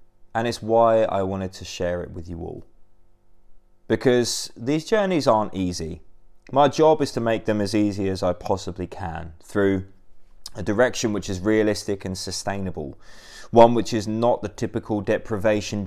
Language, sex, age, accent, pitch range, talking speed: English, male, 20-39, British, 90-110 Hz, 165 wpm